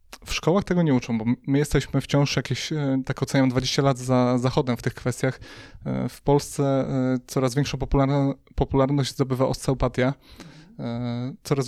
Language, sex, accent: Polish, male, native